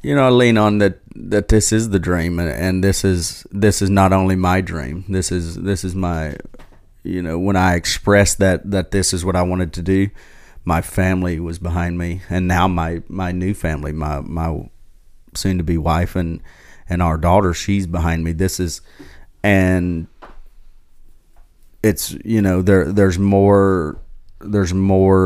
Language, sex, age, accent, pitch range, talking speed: English, male, 30-49, American, 85-95 Hz, 175 wpm